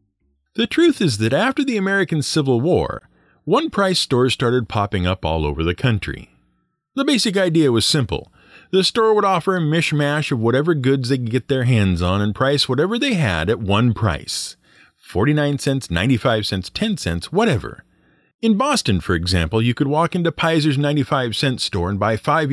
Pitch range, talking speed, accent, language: 105-165 Hz, 180 wpm, American, English